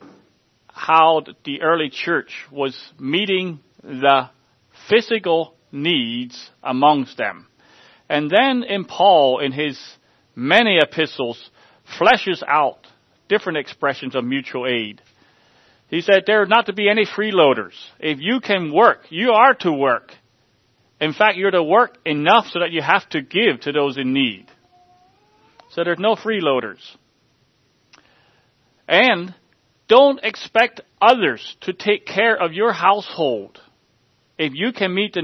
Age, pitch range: 40-59, 130-190 Hz